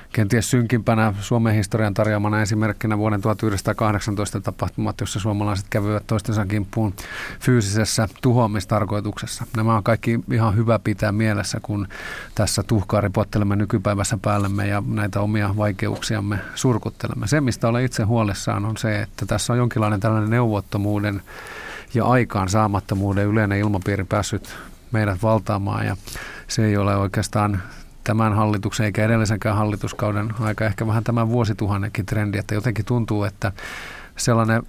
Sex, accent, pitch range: male, native, 105-115 Hz